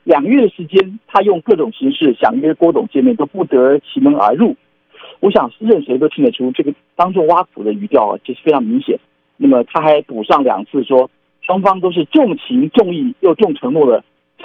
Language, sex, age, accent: Chinese, male, 50-69, native